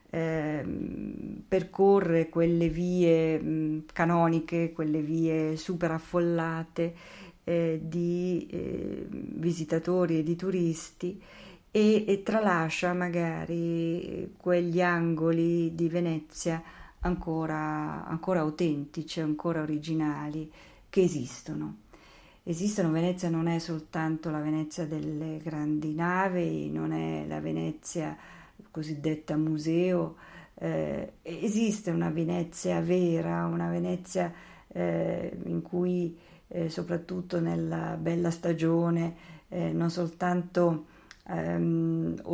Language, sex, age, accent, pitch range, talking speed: Italian, female, 40-59, native, 155-175 Hz, 90 wpm